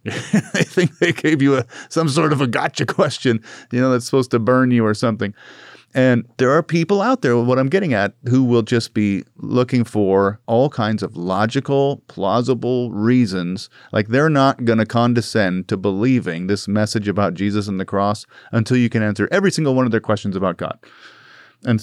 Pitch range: 100-125 Hz